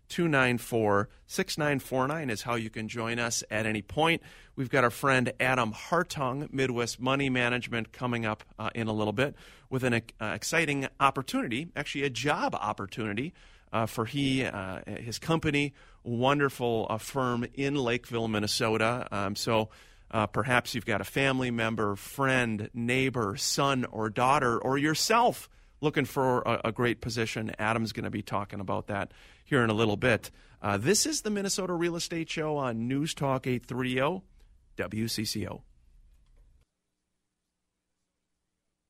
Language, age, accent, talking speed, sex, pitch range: English, 40-59, American, 150 wpm, male, 110-145 Hz